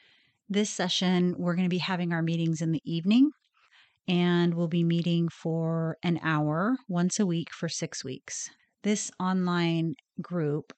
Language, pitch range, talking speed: English, 155-185 Hz, 155 wpm